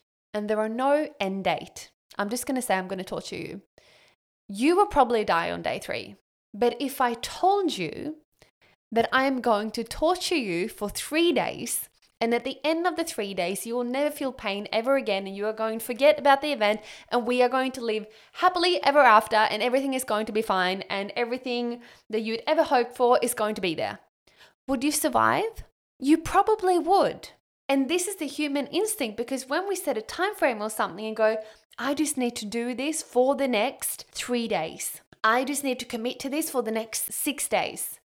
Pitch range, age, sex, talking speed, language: 220-295 Hz, 10-29, female, 215 wpm, English